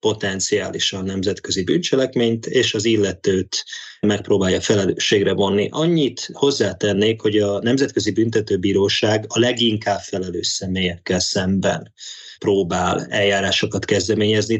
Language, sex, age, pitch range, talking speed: Hungarian, male, 20-39, 95-110 Hz, 90 wpm